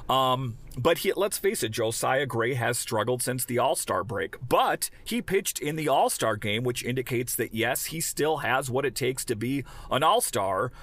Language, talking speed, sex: English, 190 wpm, male